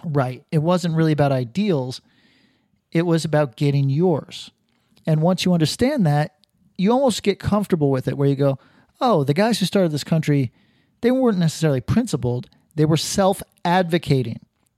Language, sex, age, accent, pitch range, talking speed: English, male, 40-59, American, 135-185 Hz, 160 wpm